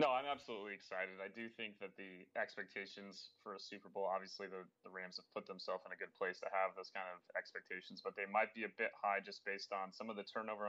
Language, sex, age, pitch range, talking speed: English, male, 20-39, 95-105 Hz, 255 wpm